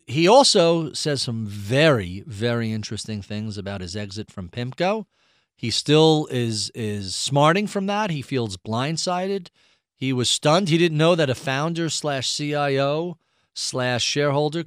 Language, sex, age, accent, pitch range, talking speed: English, male, 40-59, American, 120-160 Hz, 145 wpm